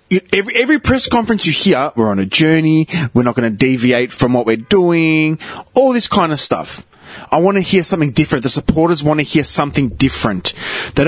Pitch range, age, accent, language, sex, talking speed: 150-205 Hz, 20-39, Australian, English, male, 205 wpm